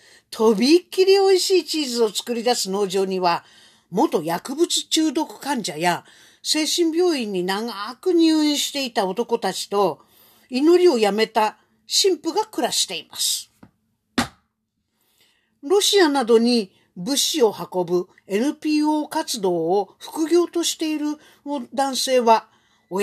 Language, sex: Japanese, female